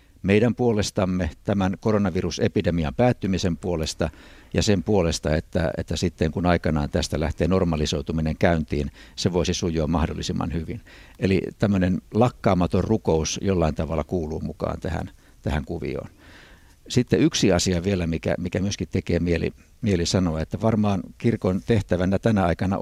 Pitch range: 80-100 Hz